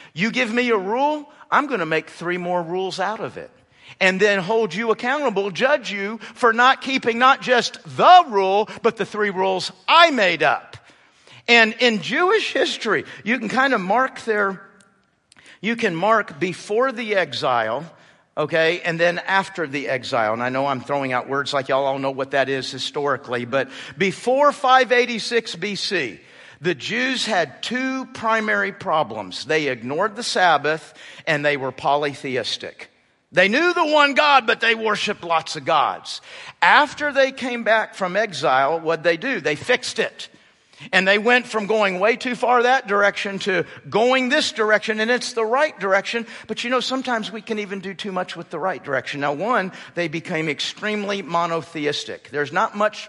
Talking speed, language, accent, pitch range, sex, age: 175 wpm, English, American, 165-240 Hz, male, 50-69